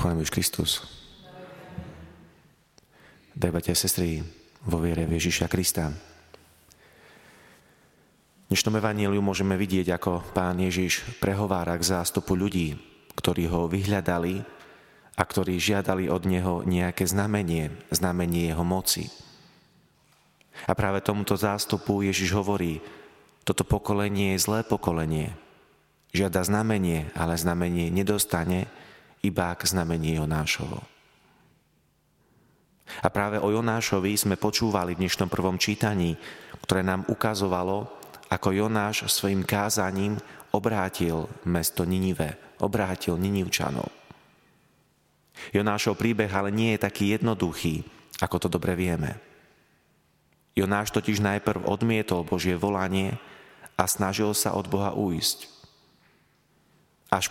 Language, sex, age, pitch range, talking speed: Slovak, male, 30-49, 85-105 Hz, 105 wpm